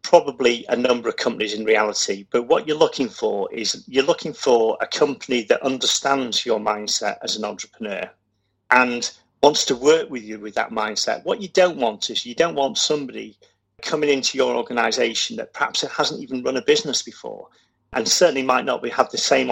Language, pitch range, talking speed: English, 115-150 Hz, 195 wpm